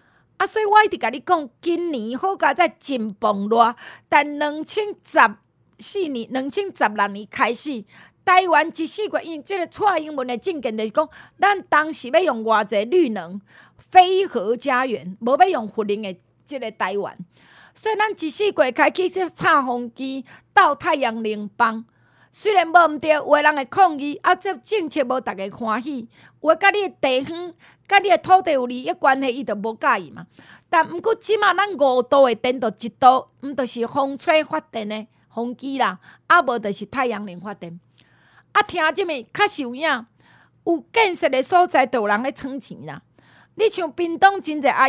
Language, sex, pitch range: Chinese, female, 240-360 Hz